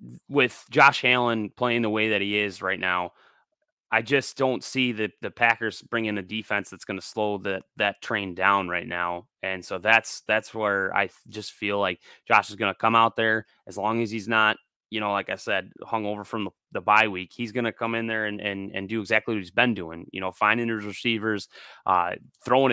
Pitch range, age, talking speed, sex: 100-115 Hz, 20-39, 225 wpm, male